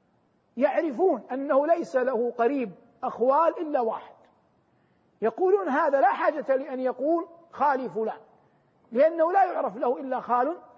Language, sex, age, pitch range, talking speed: Arabic, male, 50-69, 235-300 Hz, 120 wpm